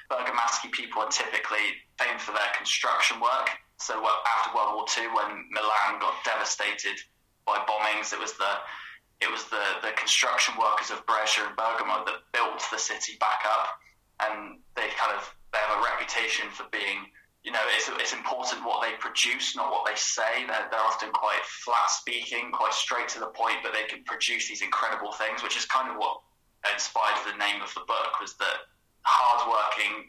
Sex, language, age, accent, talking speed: male, English, 10-29, British, 185 wpm